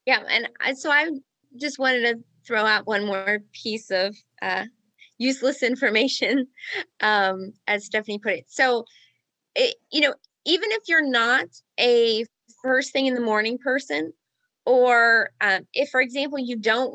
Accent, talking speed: American, 150 wpm